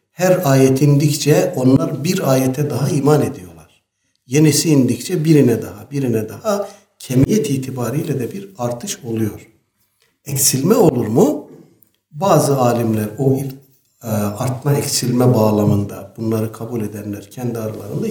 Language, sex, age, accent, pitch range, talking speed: Turkish, male, 60-79, native, 110-145 Hz, 115 wpm